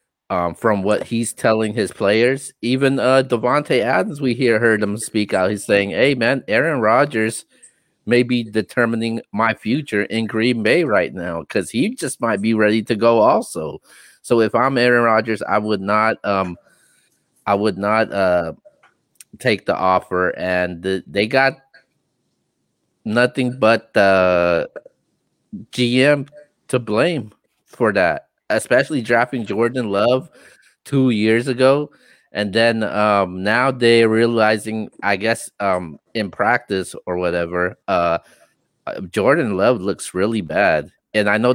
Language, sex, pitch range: English, male, 100-120 Hz